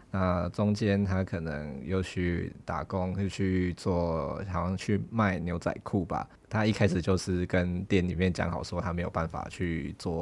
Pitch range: 90-105 Hz